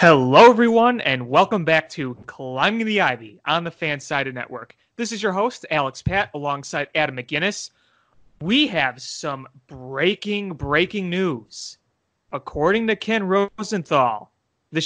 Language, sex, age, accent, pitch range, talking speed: English, male, 30-49, American, 140-205 Hz, 135 wpm